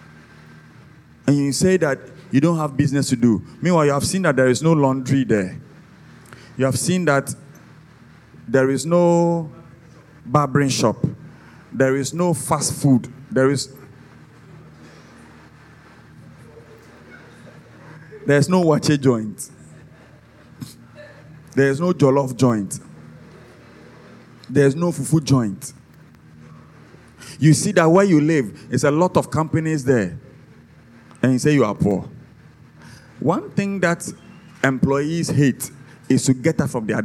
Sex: male